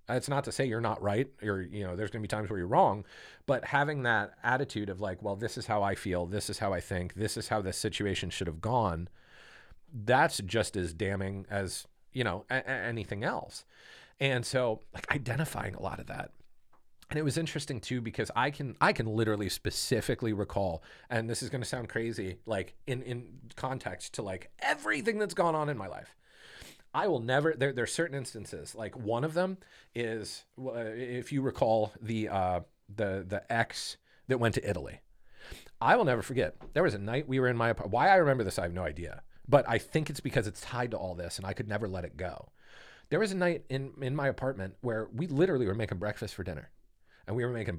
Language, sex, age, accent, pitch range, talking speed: English, male, 30-49, American, 100-130 Hz, 225 wpm